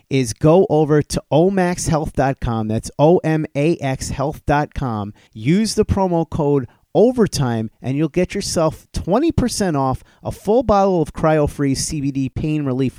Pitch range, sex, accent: 135-180 Hz, male, American